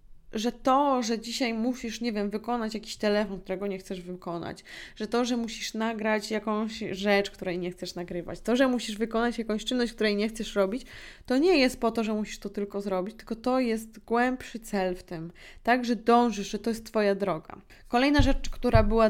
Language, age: Polish, 20-39